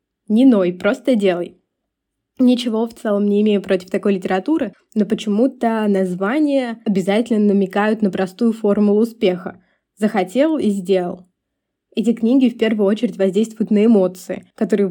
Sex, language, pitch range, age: female, Russian, 195-230 Hz, 20-39